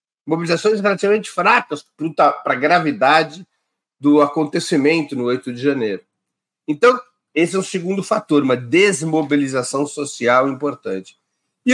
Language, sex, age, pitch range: Portuguese, male, 50-69, 120-180 Hz